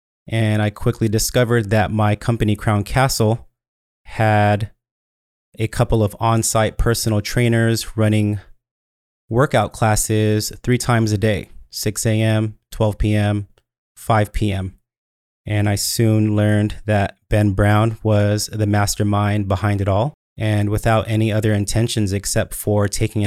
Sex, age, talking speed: male, 30-49, 130 wpm